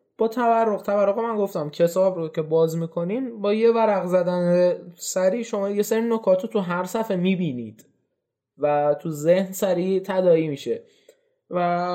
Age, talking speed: 20-39, 150 wpm